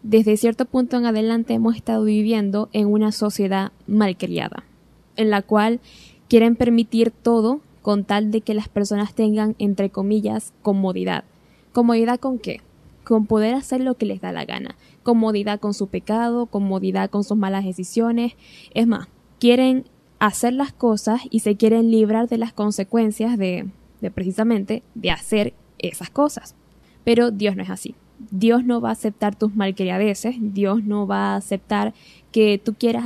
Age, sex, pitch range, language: 10-29, female, 205-230 Hz, Spanish